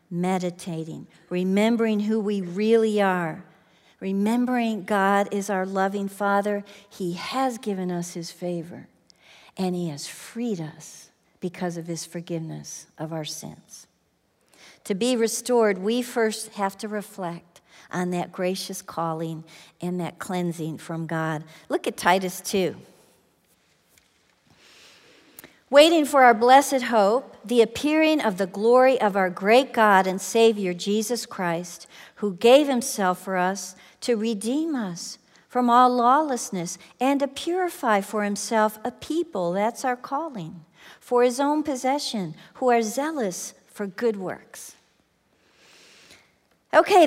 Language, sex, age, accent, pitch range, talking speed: English, female, 50-69, American, 180-245 Hz, 130 wpm